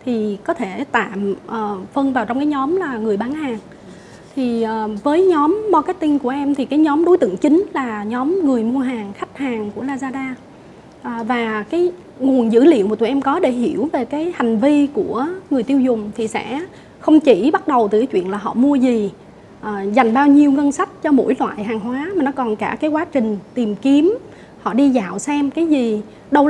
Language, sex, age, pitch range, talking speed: Vietnamese, female, 20-39, 220-290 Hz, 210 wpm